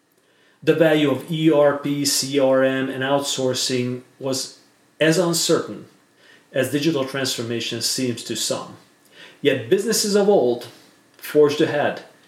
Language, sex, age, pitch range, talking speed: English, male, 40-59, 130-160 Hz, 110 wpm